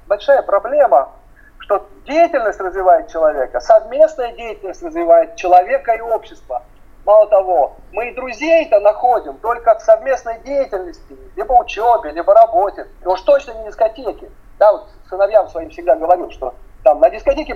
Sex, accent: male, native